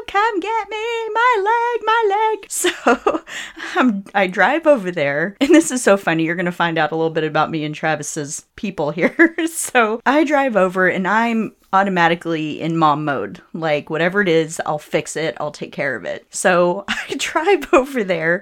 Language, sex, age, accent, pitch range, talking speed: English, female, 30-49, American, 170-265 Hz, 185 wpm